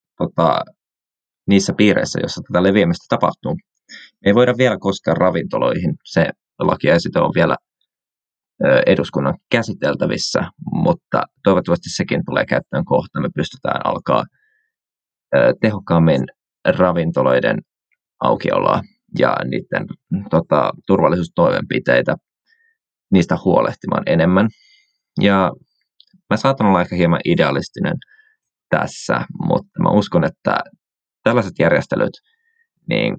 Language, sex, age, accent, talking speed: Finnish, male, 20-39, native, 90 wpm